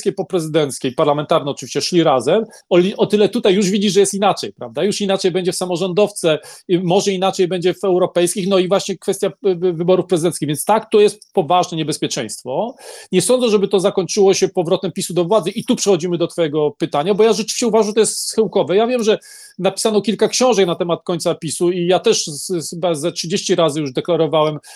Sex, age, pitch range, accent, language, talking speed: male, 40-59, 175-220 Hz, native, Polish, 195 wpm